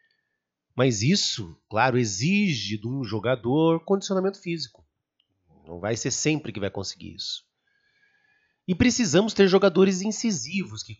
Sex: male